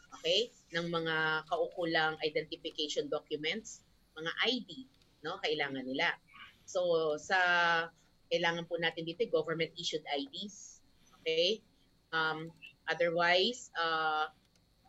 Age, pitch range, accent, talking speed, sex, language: 20-39, 155-185 Hz, native, 95 wpm, female, Filipino